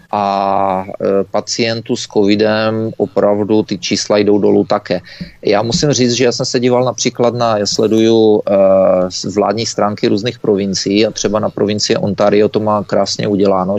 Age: 30-49